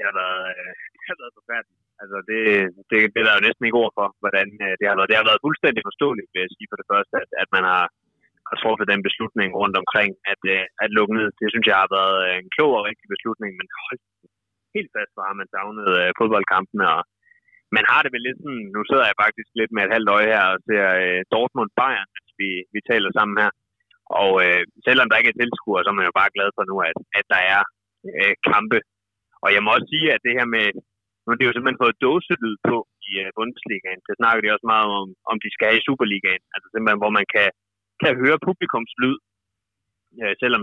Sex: male